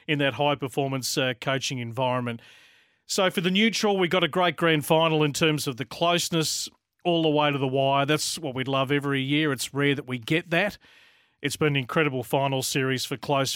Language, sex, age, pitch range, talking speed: English, male, 40-59, 135-155 Hz, 205 wpm